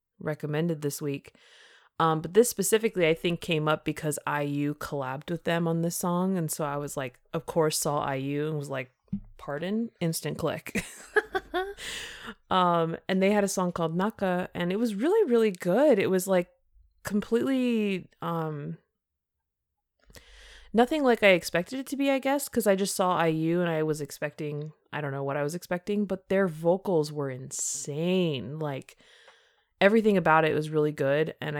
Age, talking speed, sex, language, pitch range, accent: 20-39, 175 wpm, female, English, 145-185 Hz, American